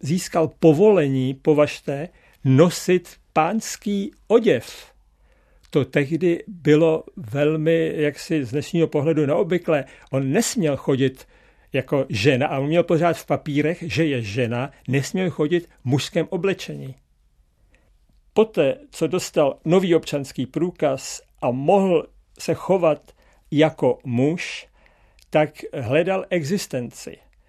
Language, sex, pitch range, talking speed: Czech, male, 145-180 Hz, 110 wpm